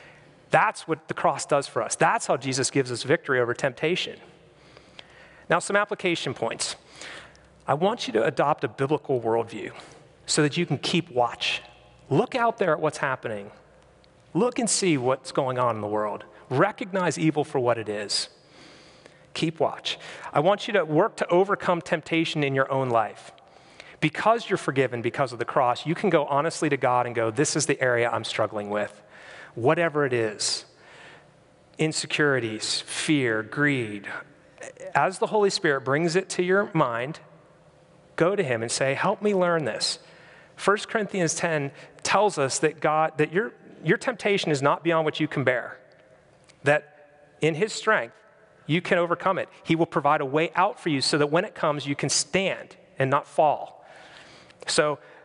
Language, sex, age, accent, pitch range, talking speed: English, male, 40-59, American, 135-175 Hz, 175 wpm